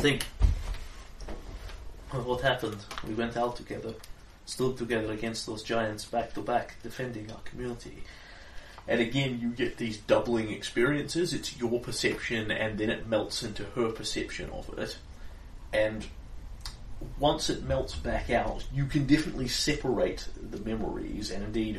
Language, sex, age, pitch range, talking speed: English, male, 30-49, 90-130 Hz, 140 wpm